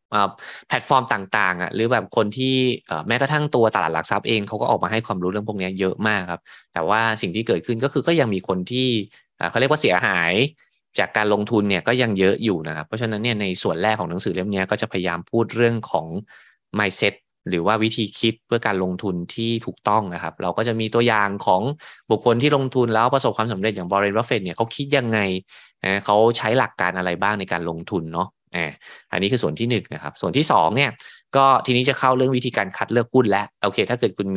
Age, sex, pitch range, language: 20-39, male, 95-120 Hz, Thai